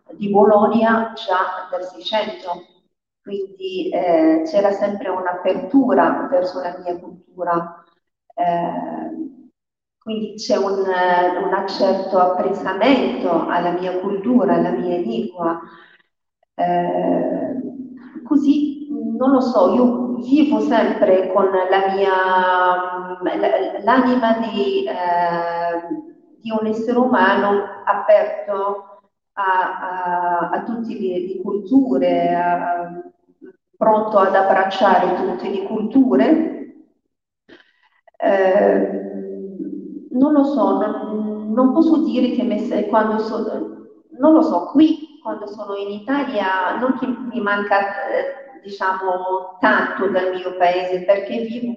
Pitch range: 185-270 Hz